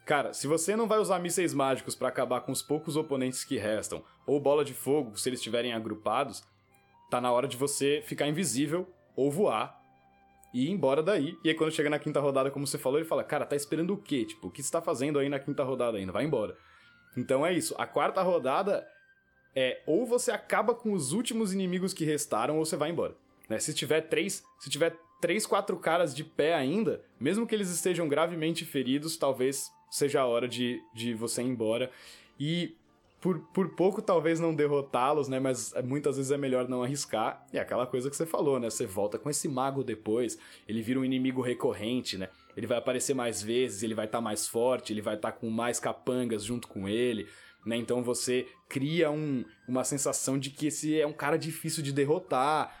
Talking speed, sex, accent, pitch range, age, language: 205 wpm, male, Brazilian, 125-165 Hz, 20-39, Portuguese